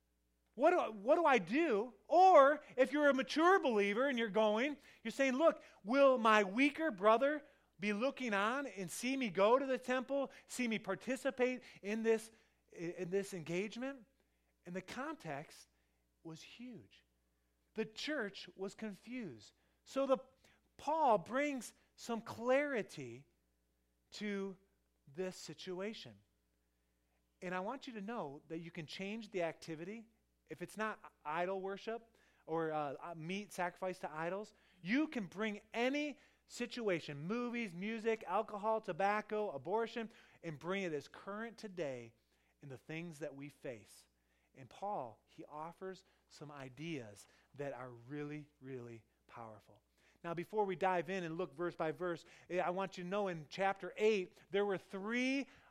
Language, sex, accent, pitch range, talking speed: English, male, American, 155-230 Hz, 145 wpm